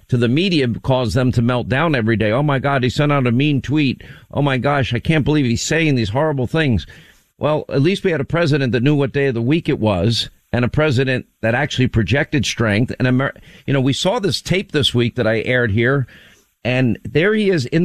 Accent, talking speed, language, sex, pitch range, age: American, 240 wpm, English, male, 115-150 Hz, 50-69